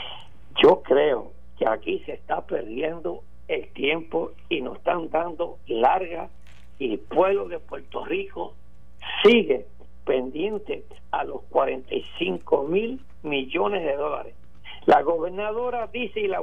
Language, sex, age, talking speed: Spanish, male, 60-79, 125 wpm